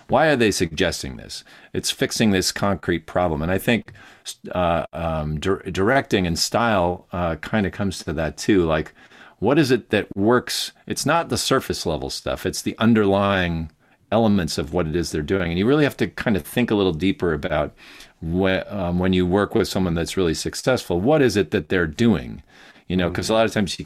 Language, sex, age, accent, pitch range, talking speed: English, male, 40-59, American, 80-100 Hz, 210 wpm